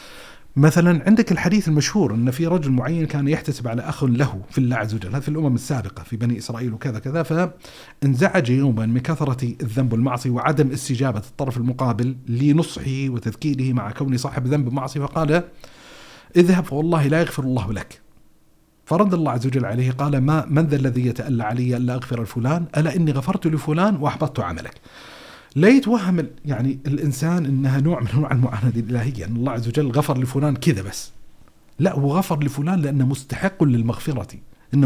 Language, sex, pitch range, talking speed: Arabic, male, 130-165 Hz, 165 wpm